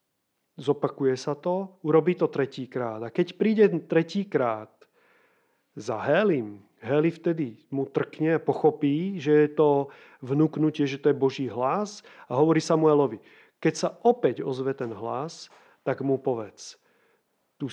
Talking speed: 135 wpm